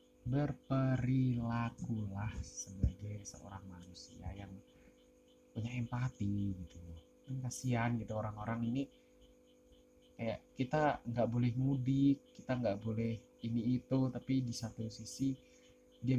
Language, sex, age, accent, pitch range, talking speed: Indonesian, male, 20-39, native, 85-125 Hz, 105 wpm